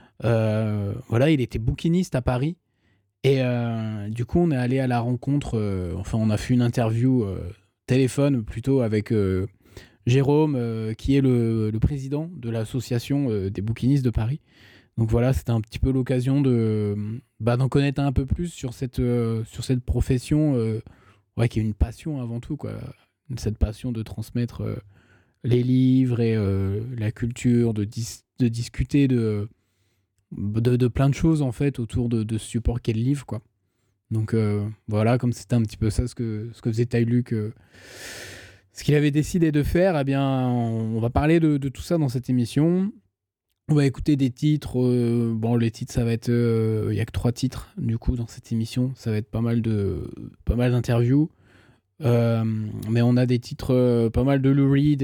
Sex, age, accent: male, 20-39, French